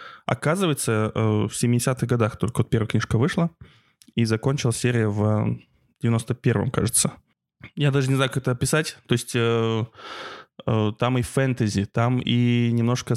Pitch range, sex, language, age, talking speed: 115-130 Hz, male, Russian, 20-39, 135 wpm